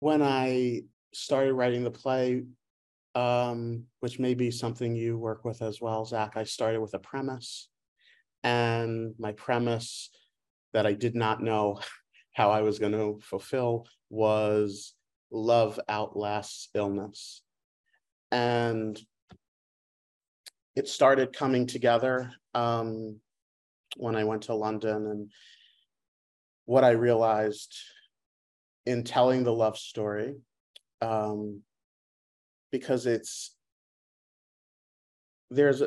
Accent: American